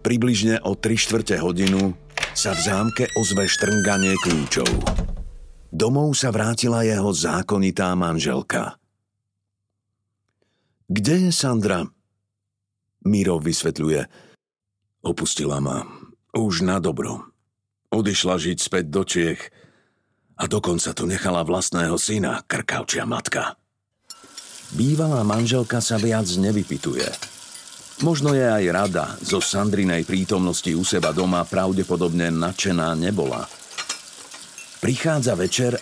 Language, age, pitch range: Slovak, 60-79, 90-115 Hz